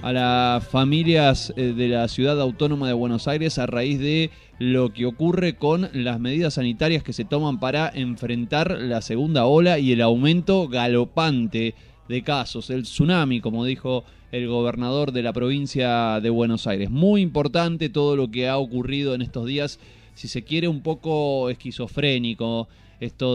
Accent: Argentinian